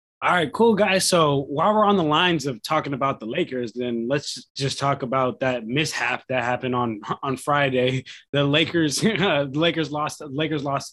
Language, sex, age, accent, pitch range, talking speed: English, male, 20-39, American, 140-180 Hz, 190 wpm